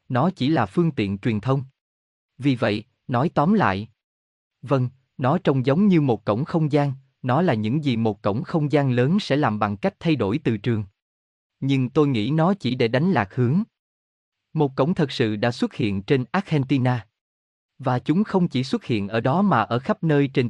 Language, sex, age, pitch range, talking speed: Vietnamese, male, 20-39, 110-155 Hz, 200 wpm